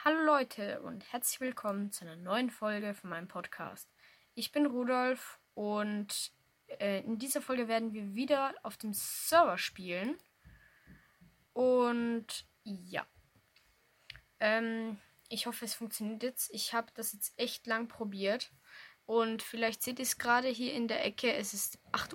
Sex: female